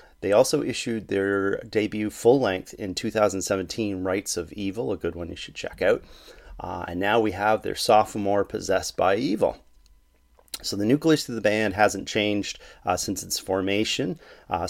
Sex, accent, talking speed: male, American, 165 wpm